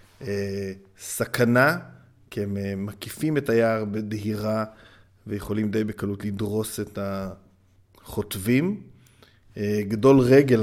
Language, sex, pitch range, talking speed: Hebrew, male, 100-120 Hz, 85 wpm